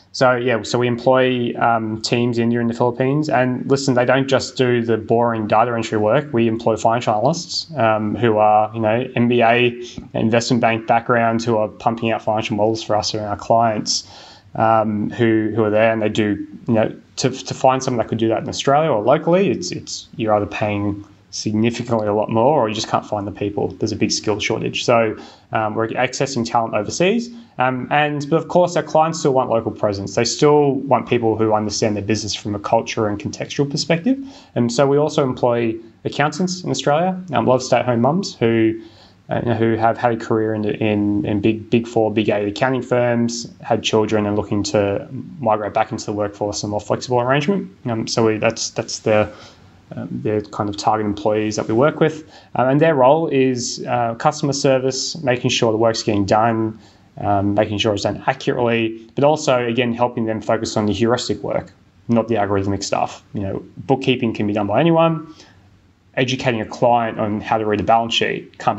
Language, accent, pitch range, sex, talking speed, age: English, Australian, 110-130 Hz, male, 205 wpm, 20-39